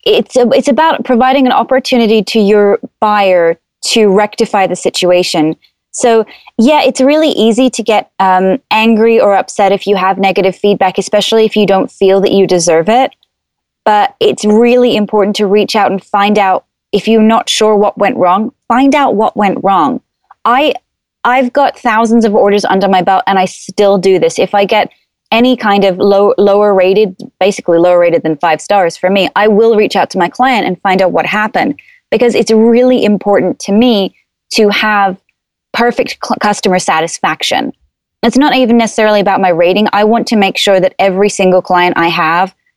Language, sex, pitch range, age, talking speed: English, female, 190-230 Hz, 20-39, 185 wpm